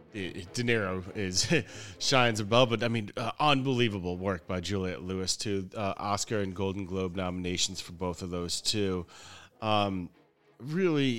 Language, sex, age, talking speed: English, male, 30-49, 145 wpm